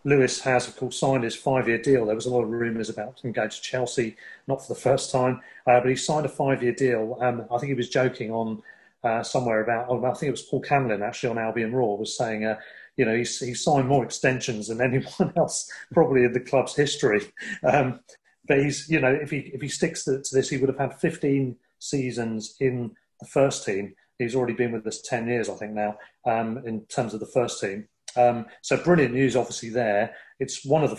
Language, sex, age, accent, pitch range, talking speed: English, male, 40-59, British, 115-135 Hz, 230 wpm